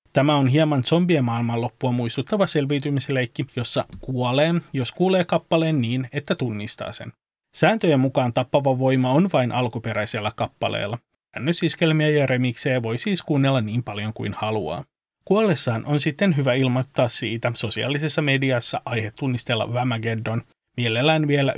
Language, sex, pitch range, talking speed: Finnish, male, 120-155 Hz, 130 wpm